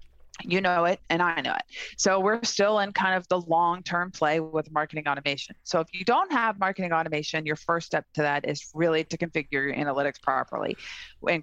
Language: English